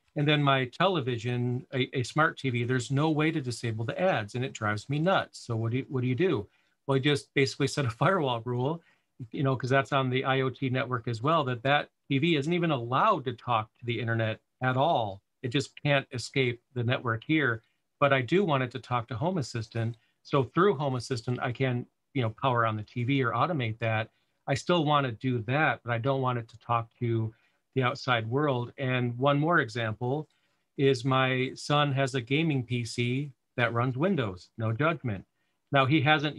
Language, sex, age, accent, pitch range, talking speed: Russian, male, 40-59, American, 120-145 Hz, 210 wpm